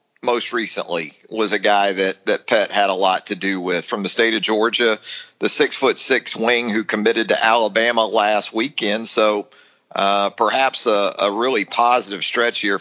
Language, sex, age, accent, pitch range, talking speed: English, male, 40-59, American, 105-140 Hz, 185 wpm